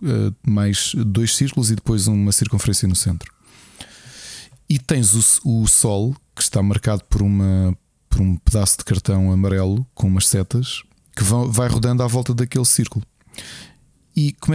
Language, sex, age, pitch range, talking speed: Portuguese, male, 20-39, 105-130 Hz, 150 wpm